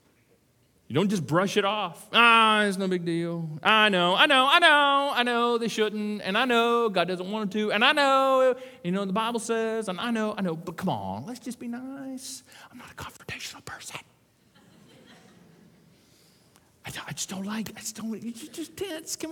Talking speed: 210 wpm